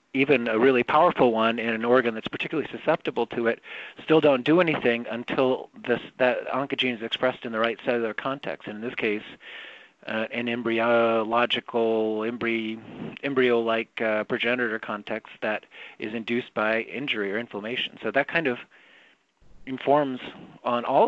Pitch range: 115-130 Hz